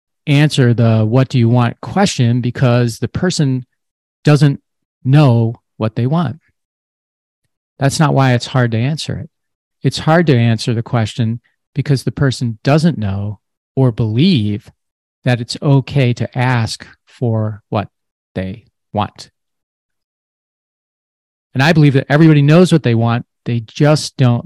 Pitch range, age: 115-145 Hz, 40-59